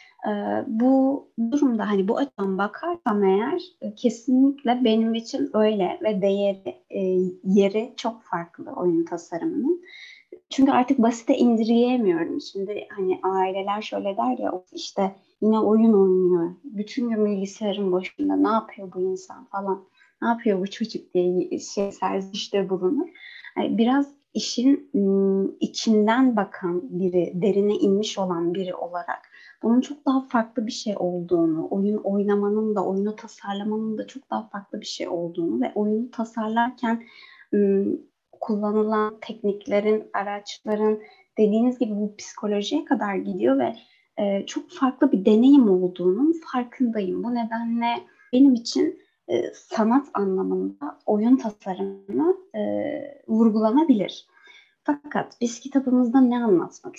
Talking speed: 115 wpm